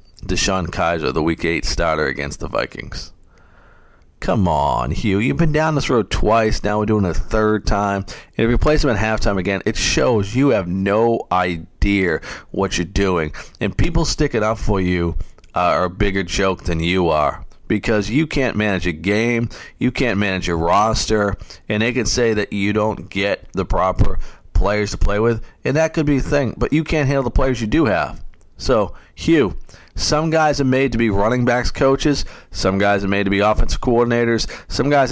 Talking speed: 200 wpm